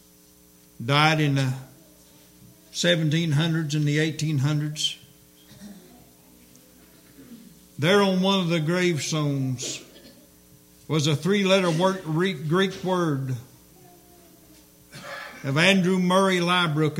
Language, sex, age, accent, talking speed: English, male, 60-79, American, 80 wpm